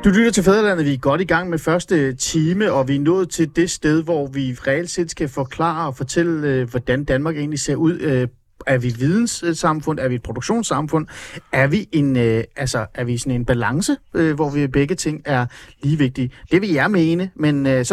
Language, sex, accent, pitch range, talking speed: Danish, male, native, 140-190 Hz, 210 wpm